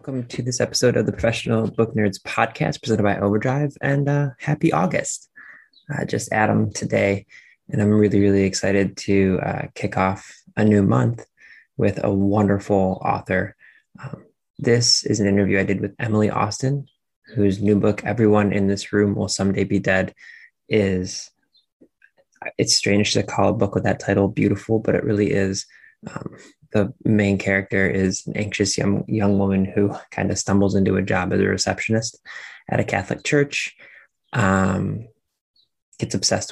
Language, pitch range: English, 100-115 Hz